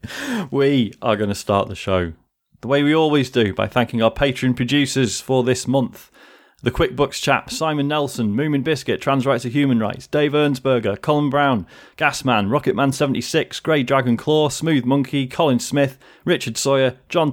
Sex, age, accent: male, 30-49, British